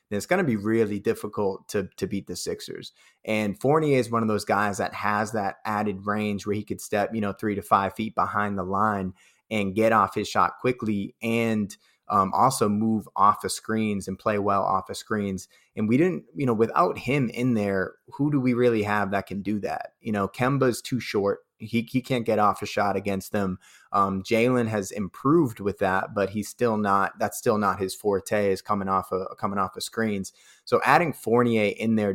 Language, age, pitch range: English, 20-39, 100-110 Hz